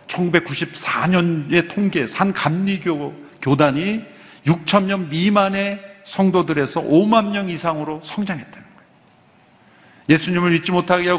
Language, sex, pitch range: Korean, male, 150-205 Hz